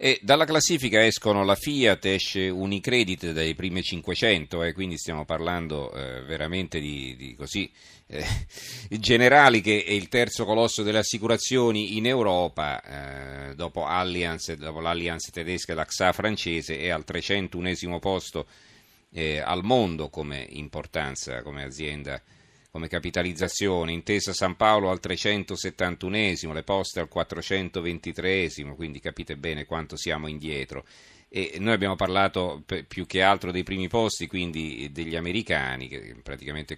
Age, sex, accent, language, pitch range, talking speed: 40-59, male, native, Italian, 75-95 Hz, 135 wpm